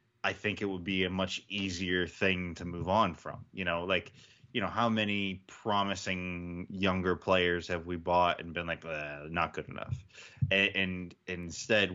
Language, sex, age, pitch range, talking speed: English, male, 20-39, 85-115 Hz, 180 wpm